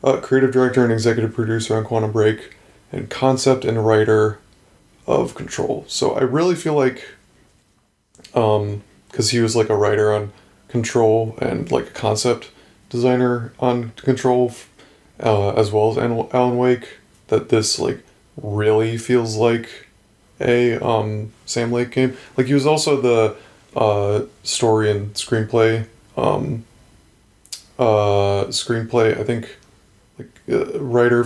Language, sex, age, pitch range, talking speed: English, male, 20-39, 105-125 Hz, 130 wpm